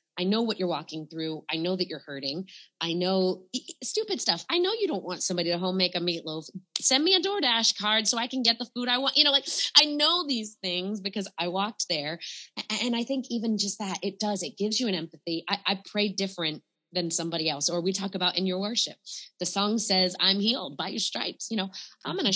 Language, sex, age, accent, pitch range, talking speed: English, female, 20-39, American, 170-225 Hz, 240 wpm